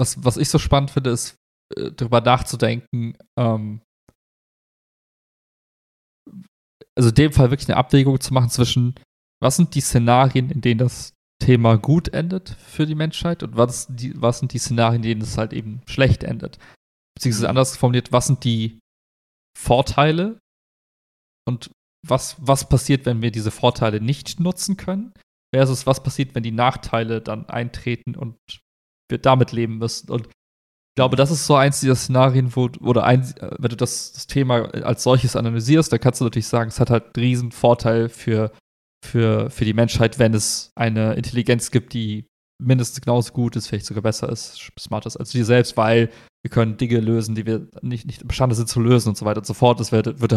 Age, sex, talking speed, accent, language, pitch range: 30-49, male, 185 wpm, German, German, 115-130 Hz